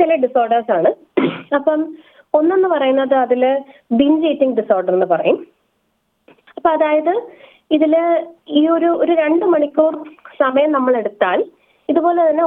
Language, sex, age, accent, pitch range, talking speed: Malayalam, female, 20-39, native, 225-315 Hz, 115 wpm